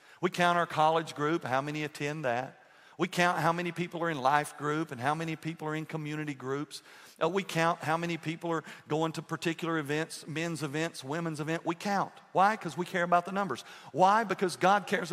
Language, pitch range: English, 150-200 Hz